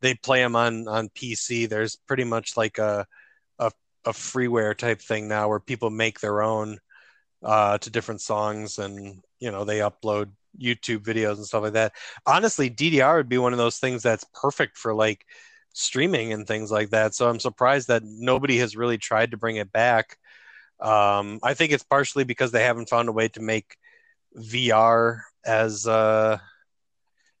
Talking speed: 180 wpm